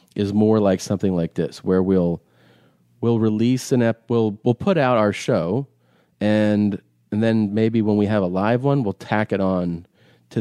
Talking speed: 190 wpm